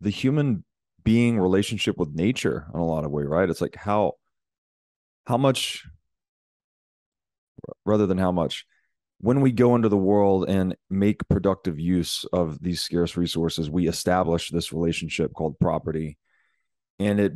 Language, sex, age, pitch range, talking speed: English, male, 30-49, 85-100 Hz, 150 wpm